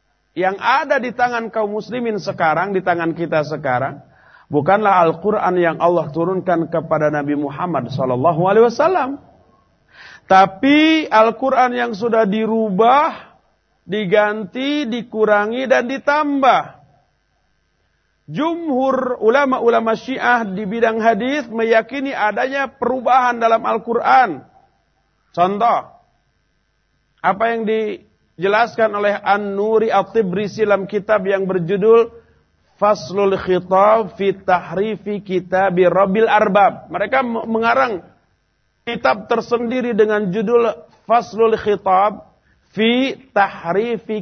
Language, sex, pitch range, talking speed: Malay, male, 180-235 Hz, 95 wpm